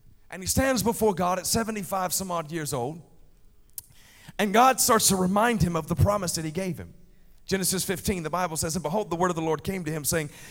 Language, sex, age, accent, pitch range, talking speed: English, male, 40-59, American, 170-225 Hz, 230 wpm